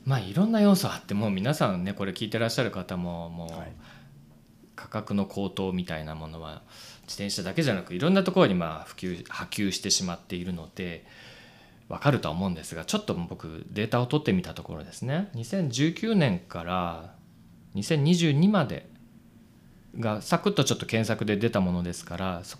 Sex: male